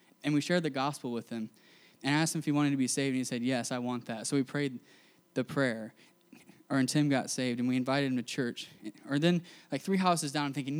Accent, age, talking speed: American, 10-29, 260 wpm